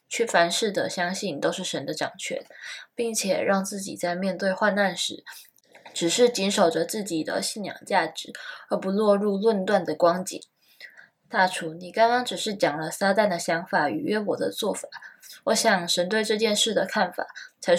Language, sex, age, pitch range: Chinese, female, 20-39, 175-210 Hz